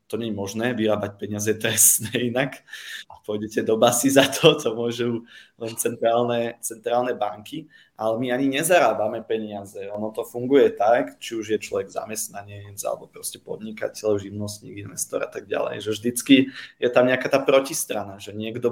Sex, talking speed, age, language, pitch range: male, 165 wpm, 20-39, Slovak, 105-125 Hz